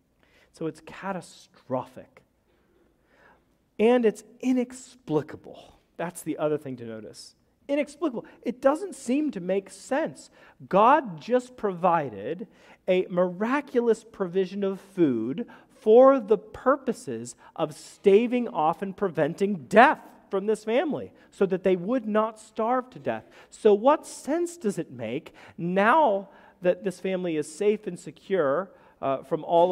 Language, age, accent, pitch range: English, 40-59, American, 165-235 Hz